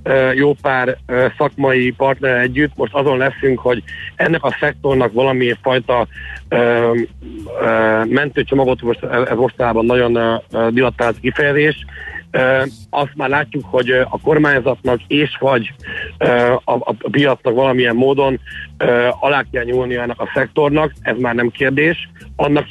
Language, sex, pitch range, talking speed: Hungarian, male, 120-145 Hz, 115 wpm